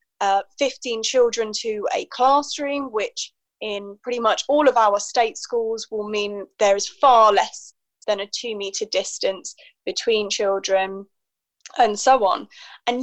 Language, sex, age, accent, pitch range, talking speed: English, female, 20-39, British, 210-275 Hz, 145 wpm